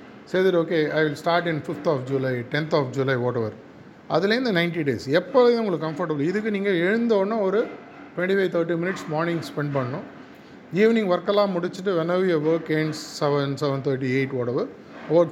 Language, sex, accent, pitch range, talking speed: Tamil, male, native, 150-195 Hz, 165 wpm